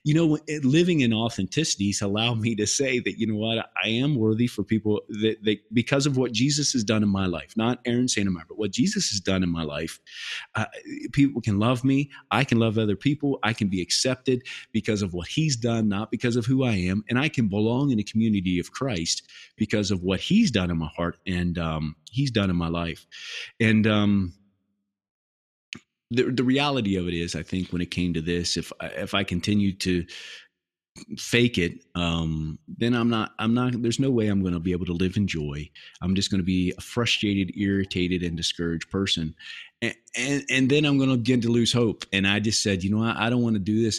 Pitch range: 95-120 Hz